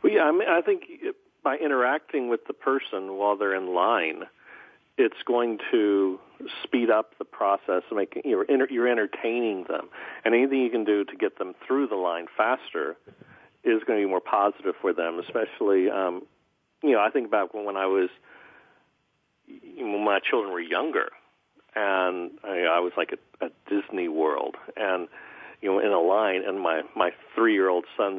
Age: 50-69